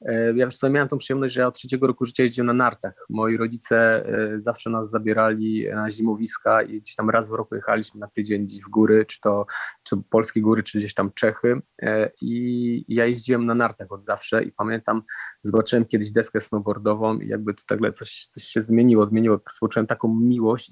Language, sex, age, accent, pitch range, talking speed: Polish, male, 20-39, native, 110-120 Hz, 195 wpm